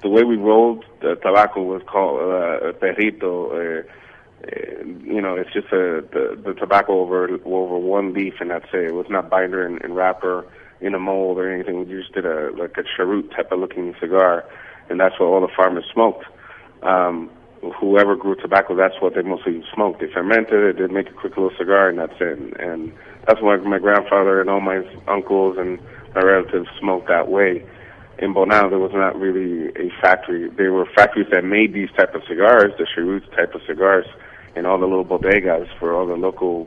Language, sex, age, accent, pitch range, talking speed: English, male, 30-49, American, 90-100 Hz, 205 wpm